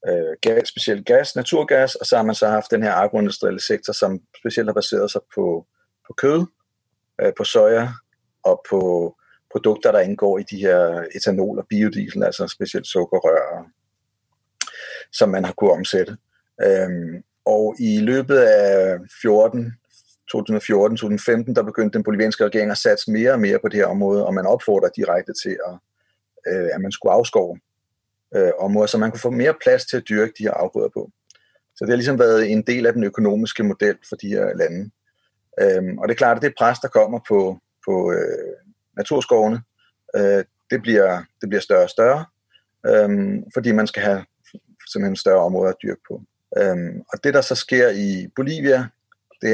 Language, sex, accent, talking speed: Danish, male, native, 175 wpm